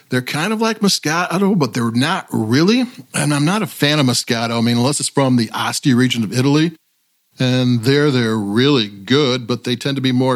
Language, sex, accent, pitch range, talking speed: English, male, American, 125-175 Hz, 215 wpm